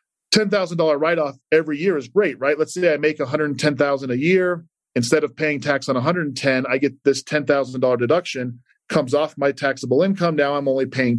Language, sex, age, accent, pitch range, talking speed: English, male, 40-59, American, 130-155 Hz, 205 wpm